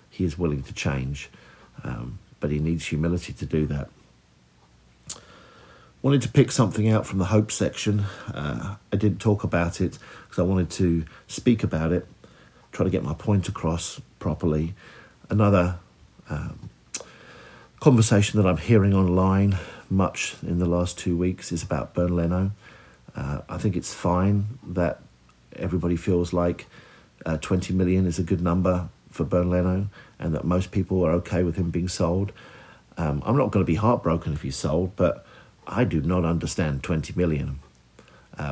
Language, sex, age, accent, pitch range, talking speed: English, male, 50-69, British, 80-100 Hz, 165 wpm